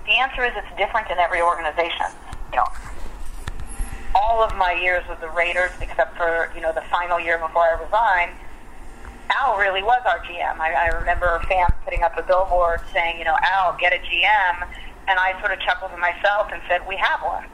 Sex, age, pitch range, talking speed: female, 40-59, 170-210 Hz, 205 wpm